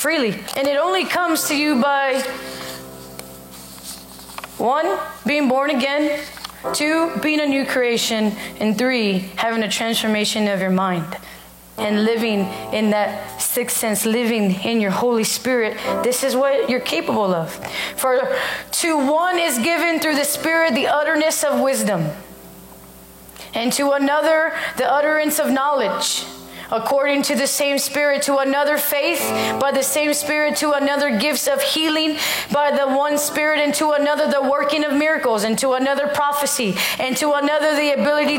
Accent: American